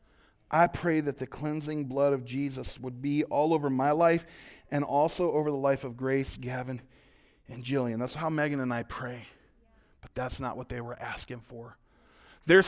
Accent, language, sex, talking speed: American, English, male, 185 wpm